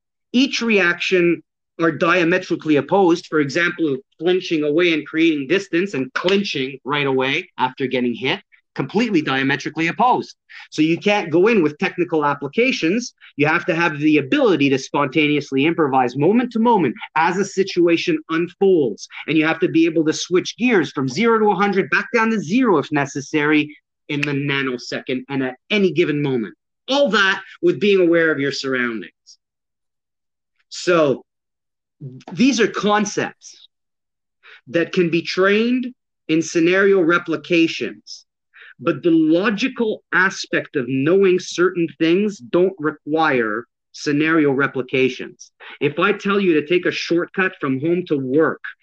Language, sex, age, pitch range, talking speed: English, male, 30-49, 145-185 Hz, 145 wpm